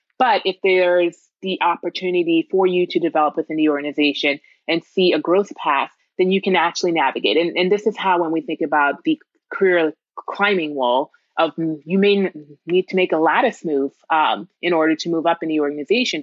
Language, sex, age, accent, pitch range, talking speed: English, female, 20-39, American, 155-195 Hz, 195 wpm